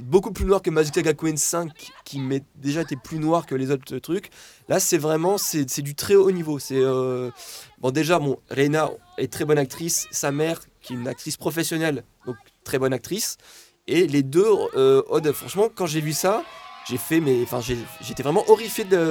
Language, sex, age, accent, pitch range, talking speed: French, male, 20-39, French, 140-190 Hz, 210 wpm